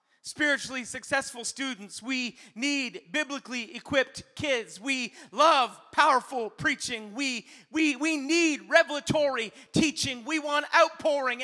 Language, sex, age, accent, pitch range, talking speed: English, male, 40-59, American, 295-375 Hz, 110 wpm